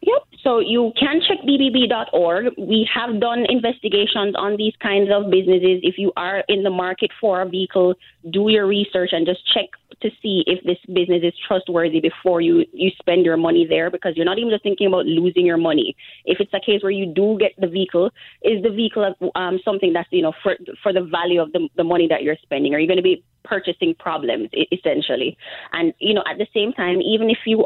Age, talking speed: 20-39, 220 wpm